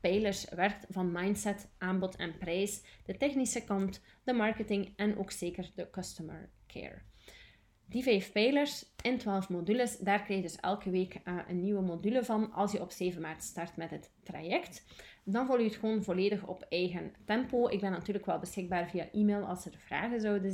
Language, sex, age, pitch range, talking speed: Dutch, female, 30-49, 180-210 Hz, 185 wpm